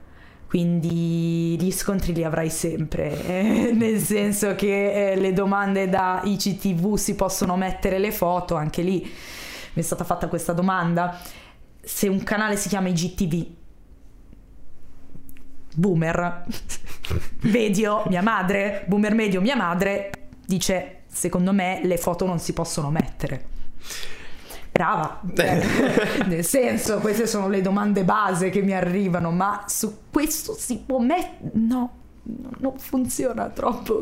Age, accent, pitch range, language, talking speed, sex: 20-39, native, 175-220 Hz, Italian, 130 wpm, female